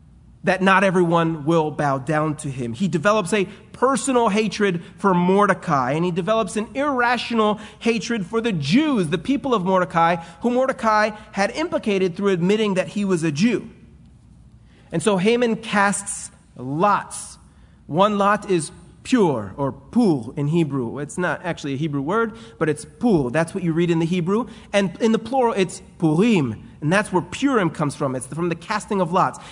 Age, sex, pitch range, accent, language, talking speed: 30-49, male, 170-225 Hz, American, English, 175 wpm